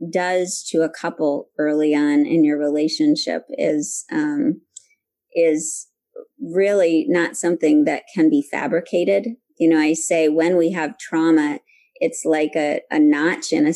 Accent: American